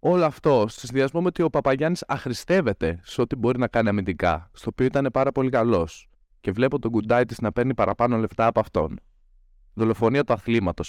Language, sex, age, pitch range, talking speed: Greek, male, 20-39, 100-140 Hz, 185 wpm